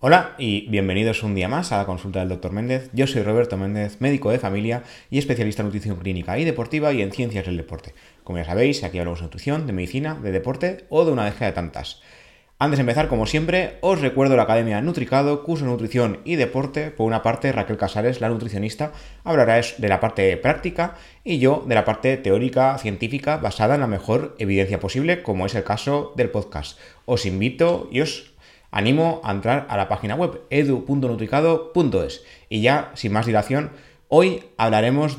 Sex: male